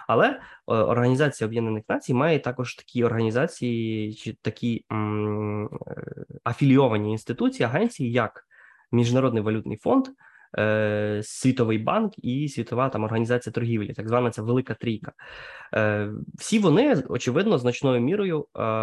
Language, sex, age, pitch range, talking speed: Ukrainian, male, 20-39, 110-135 Hz, 110 wpm